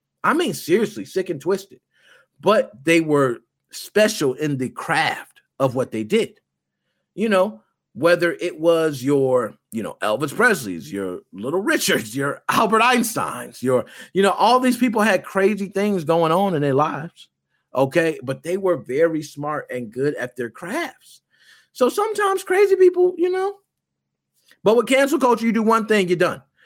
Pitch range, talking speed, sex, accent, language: 135-195 Hz, 165 wpm, male, American, English